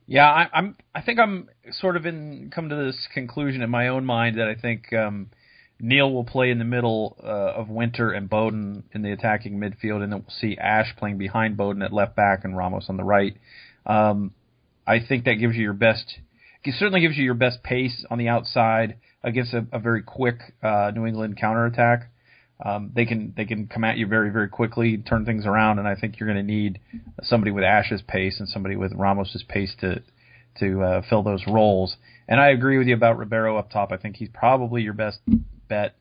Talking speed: 220 wpm